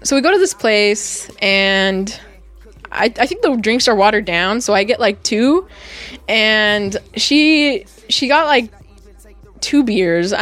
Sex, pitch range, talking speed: female, 195-260 Hz, 155 wpm